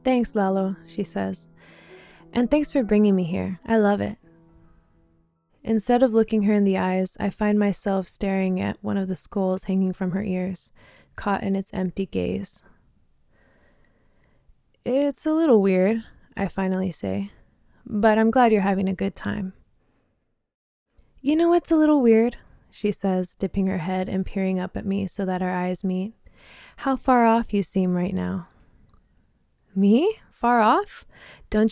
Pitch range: 185-215 Hz